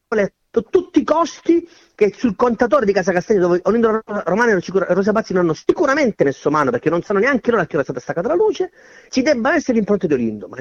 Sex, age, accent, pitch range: male, 40-59, native, 155-250 Hz